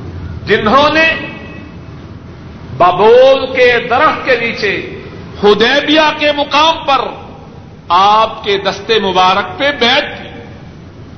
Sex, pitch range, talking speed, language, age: male, 205-280 Hz, 90 wpm, Urdu, 50-69